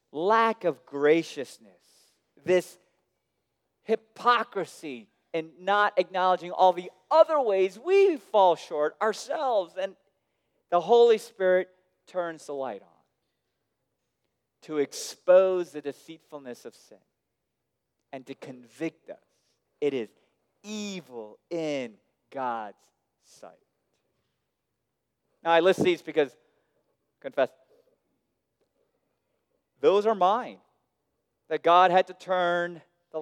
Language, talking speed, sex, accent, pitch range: English, 100 wpm, male, American, 130-185 Hz